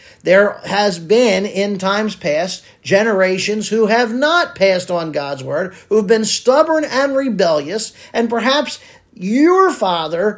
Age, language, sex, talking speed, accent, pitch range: 40-59, English, male, 140 wpm, American, 180-260 Hz